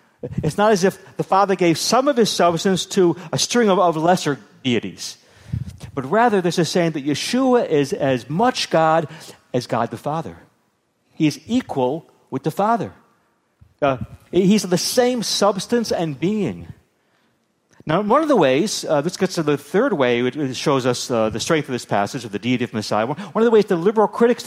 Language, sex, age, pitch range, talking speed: English, male, 60-79, 145-205 Hz, 195 wpm